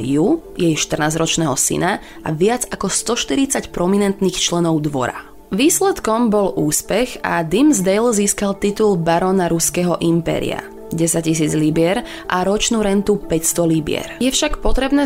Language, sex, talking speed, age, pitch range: Slovak, female, 130 wpm, 20-39, 165-210 Hz